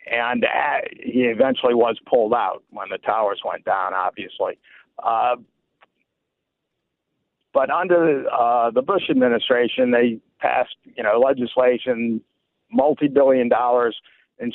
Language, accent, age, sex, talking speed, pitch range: English, American, 60-79, male, 120 wpm, 125-155 Hz